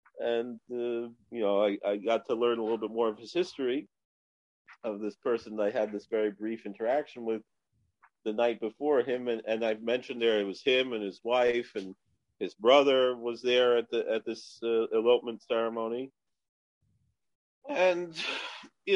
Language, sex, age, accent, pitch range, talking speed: English, male, 40-59, American, 110-140 Hz, 175 wpm